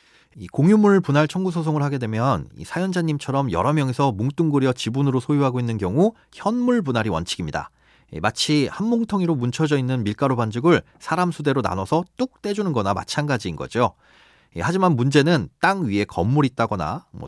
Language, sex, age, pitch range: Korean, male, 40-59, 115-170 Hz